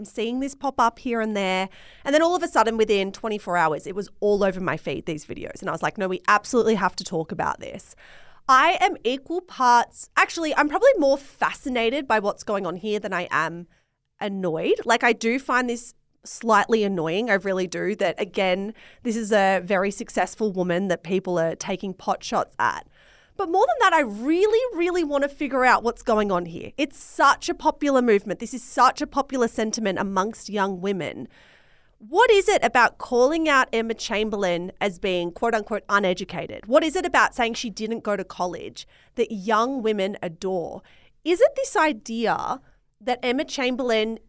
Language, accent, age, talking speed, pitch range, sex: English, Australian, 30-49, 195 wpm, 195-265 Hz, female